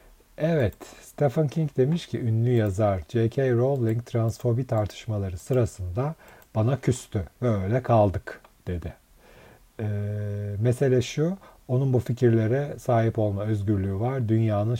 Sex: male